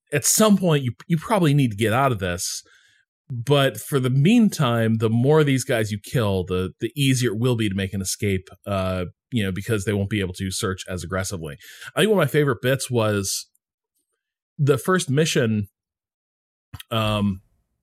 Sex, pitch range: male, 100-145 Hz